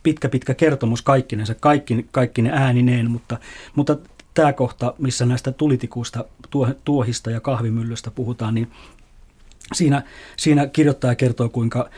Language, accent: Finnish, native